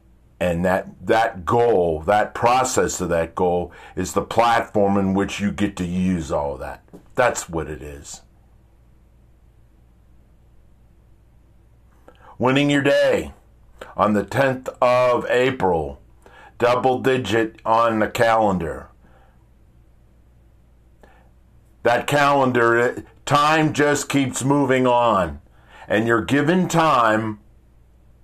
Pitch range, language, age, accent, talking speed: 80-125 Hz, English, 50-69, American, 100 wpm